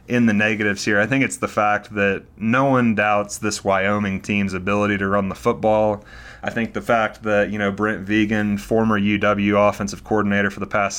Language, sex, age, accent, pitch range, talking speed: English, male, 30-49, American, 100-110 Hz, 200 wpm